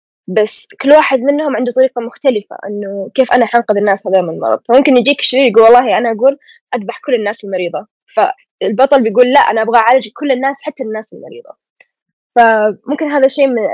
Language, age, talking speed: Arabic, 10-29, 185 wpm